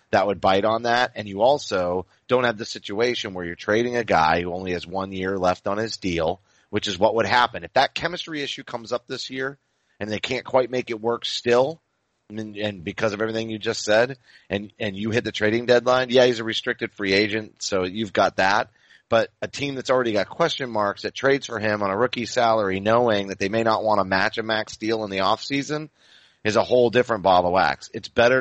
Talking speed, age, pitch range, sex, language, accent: 235 wpm, 30-49, 100-125 Hz, male, English, American